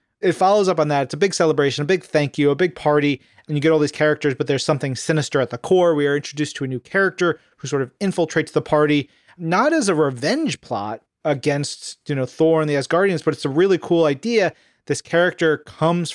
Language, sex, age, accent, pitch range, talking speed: English, male, 30-49, American, 140-170 Hz, 235 wpm